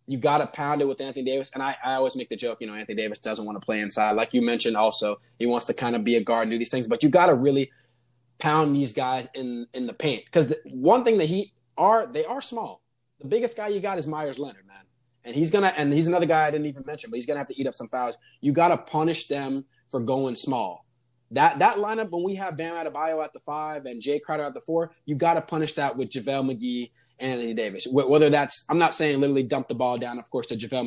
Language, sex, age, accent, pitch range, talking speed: English, male, 20-39, American, 125-160 Hz, 270 wpm